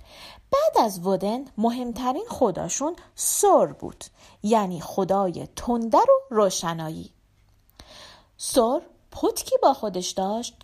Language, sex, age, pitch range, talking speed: Persian, female, 40-59, 185-285 Hz, 95 wpm